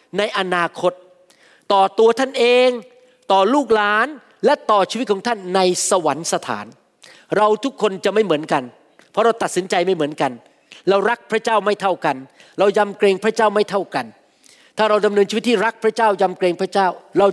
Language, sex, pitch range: Thai, male, 195-250 Hz